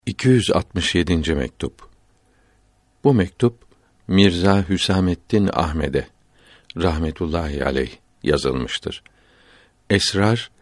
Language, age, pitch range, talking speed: Turkish, 60-79, 85-105 Hz, 60 wpm